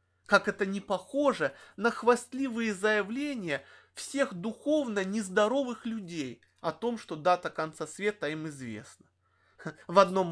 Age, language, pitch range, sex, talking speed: 20-39, Russian, 150-205 Hz, male, 120 wpm